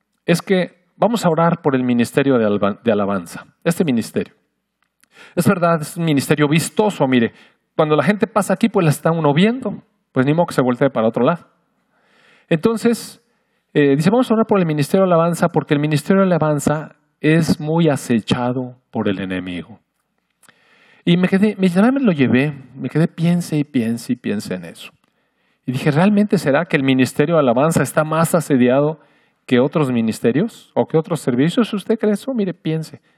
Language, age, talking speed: Spanish, 40-59, 185 wpm